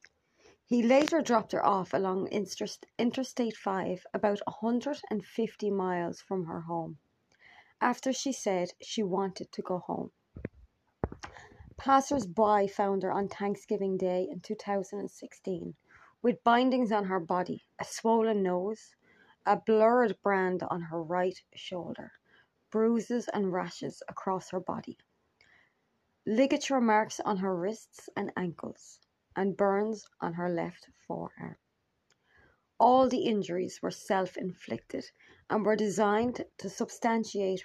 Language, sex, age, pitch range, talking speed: English, female, 30-49, 190-230 Hz, 120 wpm